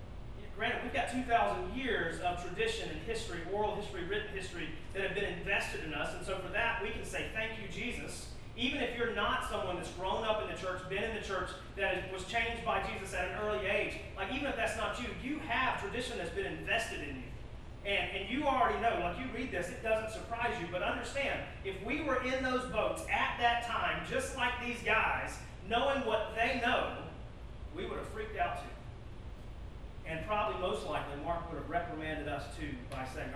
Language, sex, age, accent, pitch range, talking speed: English, male, 30-49, American, 145-220 Hz, 210 wpm